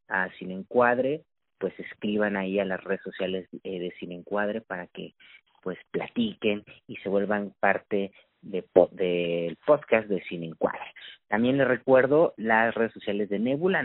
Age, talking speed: 40-59, 155 wpm